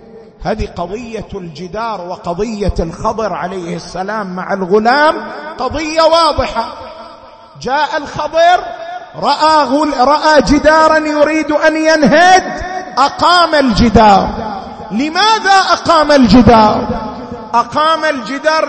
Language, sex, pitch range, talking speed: Arabic, male, 235-320 Hz, 80 wpm